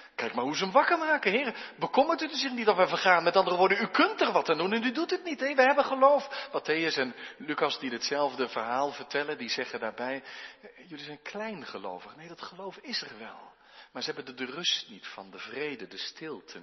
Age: 40-59